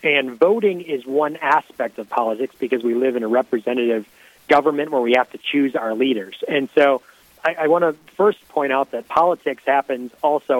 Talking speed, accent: 185 wpm, American